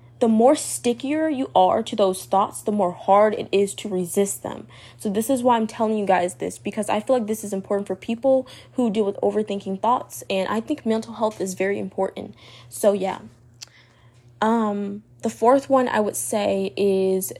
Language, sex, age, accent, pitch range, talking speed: English, female, 10-29, American, 185-225 Hz, 195 wpm